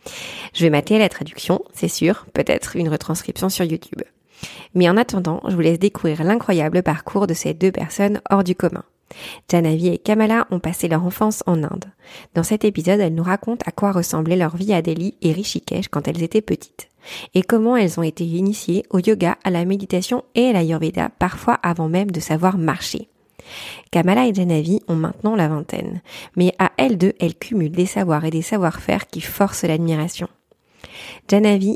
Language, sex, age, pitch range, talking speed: French, female, 30-49, 165-195 Hz, 185 wpm